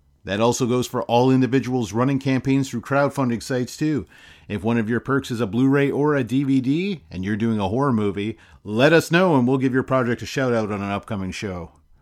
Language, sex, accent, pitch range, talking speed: English, male, American, 105-135 Hz, 220 wpm